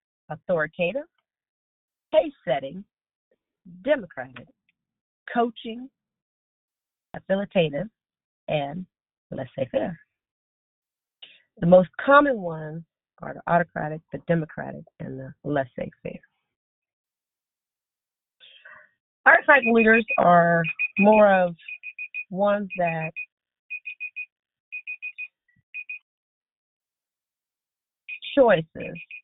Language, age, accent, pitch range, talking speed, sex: English, 40-59, American, 165-255 Hz, 55 wpm, female